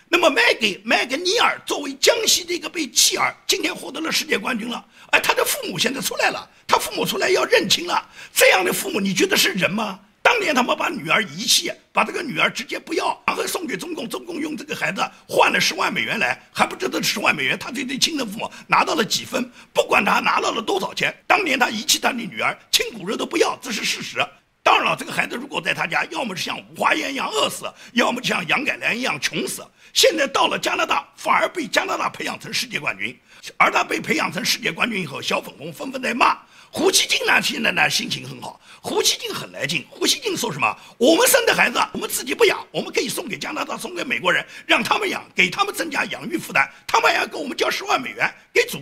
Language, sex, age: Chinese, male, 50-69